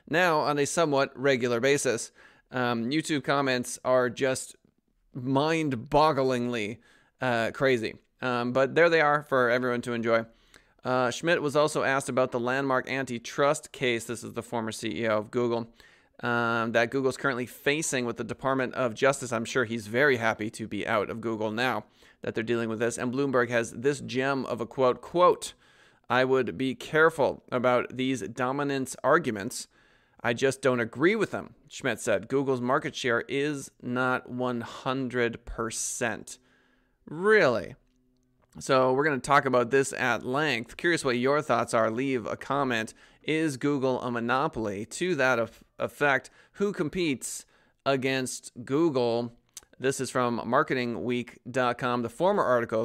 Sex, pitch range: male, 120-135 Hz